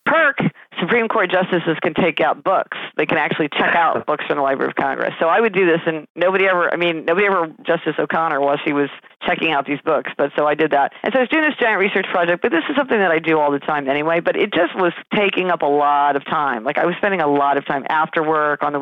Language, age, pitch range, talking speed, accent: English, 40-59, 150-195 Hz, 275 wpm, American